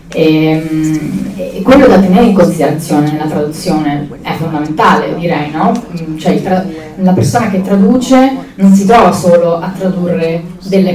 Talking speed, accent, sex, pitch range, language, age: 145 wpm, native, female, 165-195 Hz, Italian, 20-39